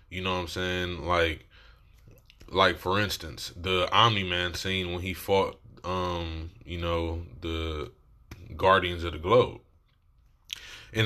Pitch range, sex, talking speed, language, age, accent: 90-105 Hz, male, 130 wpm, English, 20-39, American